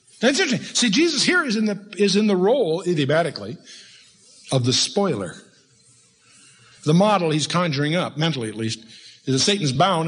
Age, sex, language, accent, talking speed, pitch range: 60-79, male, English, American, 165 wpm, 125-180 Hz